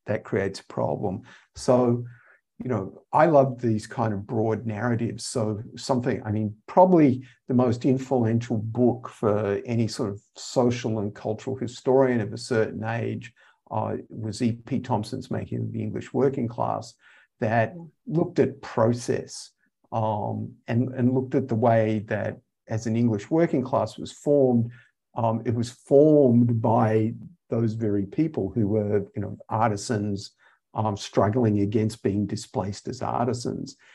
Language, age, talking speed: English, 50-69, 145 wpm